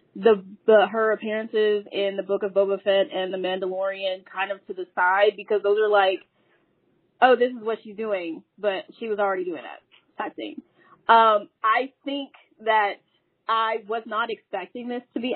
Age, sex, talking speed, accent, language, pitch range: 20-39, female, 180 wpm, American, English, 200-265 Hz